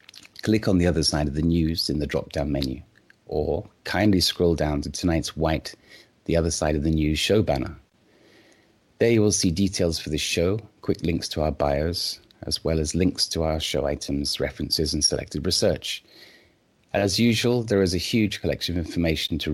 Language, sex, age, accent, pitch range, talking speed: English, male, 30-49, British, 75-95 Hz, 190 wpm